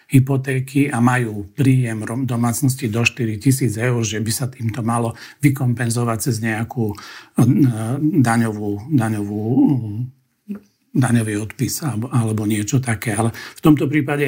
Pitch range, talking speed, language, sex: 115-130 Hz, 120 wpm, Slovak, male